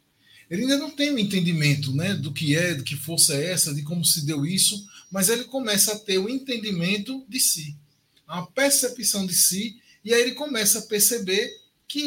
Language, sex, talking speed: Portuguese, male, 200 wpm